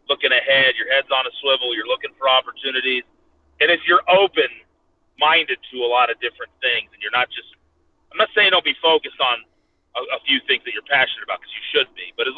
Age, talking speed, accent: 30-49, 225 wpm, American